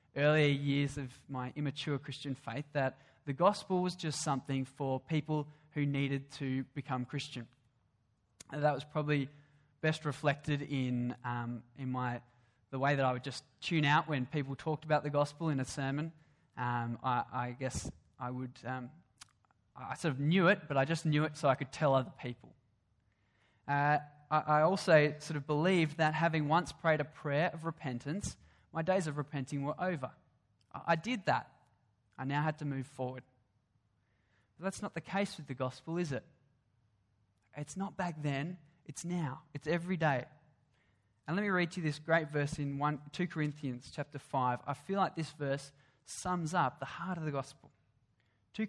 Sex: male